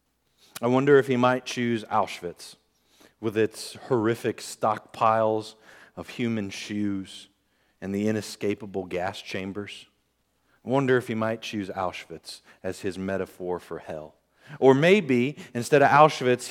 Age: 40-59